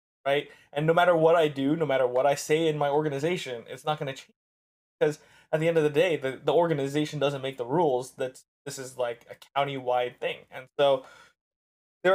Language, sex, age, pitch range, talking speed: English, male, 20-39, 130-165 Hz, 220 wpm